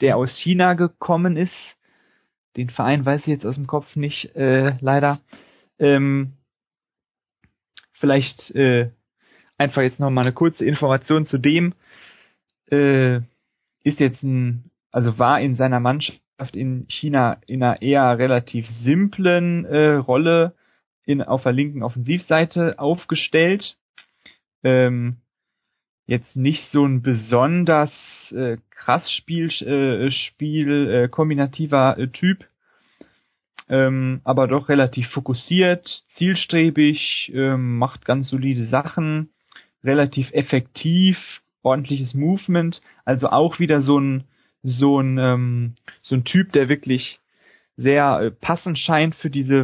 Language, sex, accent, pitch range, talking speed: German, male, German, 130-155 Hz, 120 wpm